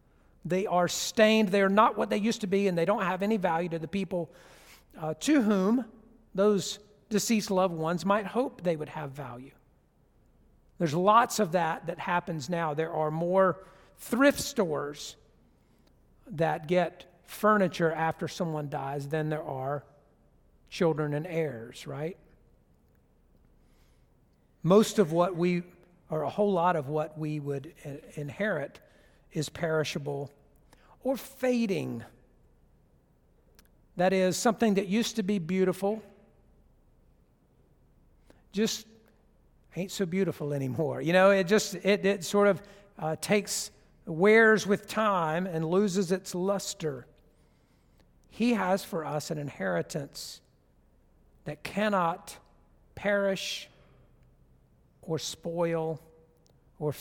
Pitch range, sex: 155-200 Hz, male